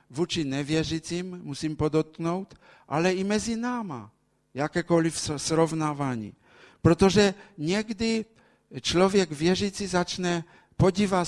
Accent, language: Polish, Czech